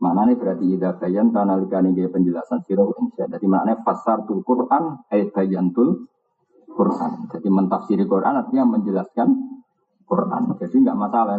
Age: 50-69